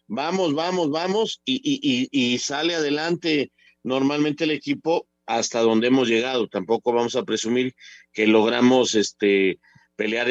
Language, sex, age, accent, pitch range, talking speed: Spanish, male, 50-69, Mexican, 125-160 Hz, 140 wpm